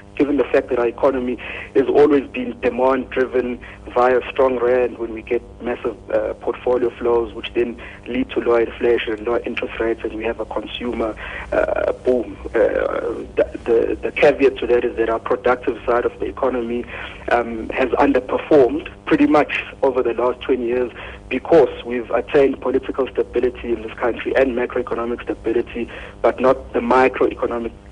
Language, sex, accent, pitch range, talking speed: English, male, South African, 115-150 Hz, 165 wpm